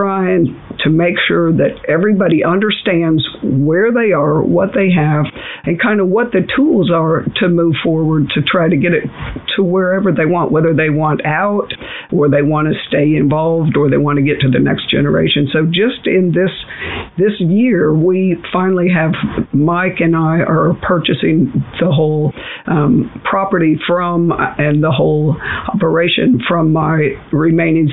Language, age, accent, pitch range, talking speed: English, 50-69, American, 160-195 Hz, 165 wpm